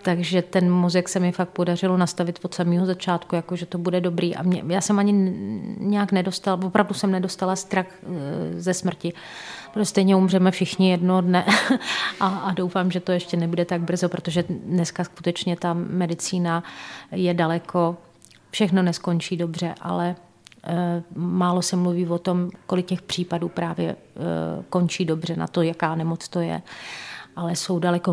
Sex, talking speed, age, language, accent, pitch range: female, 160 wpm, 30-49, Czech, native, 170-185 Hz